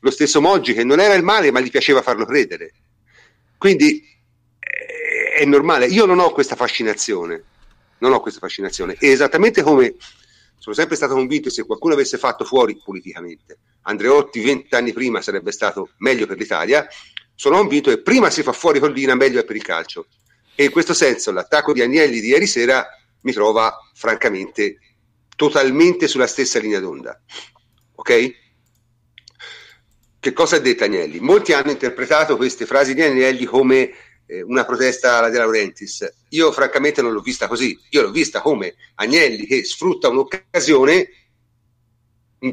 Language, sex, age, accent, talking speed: Italian, male, 40-59, native, 160 wpm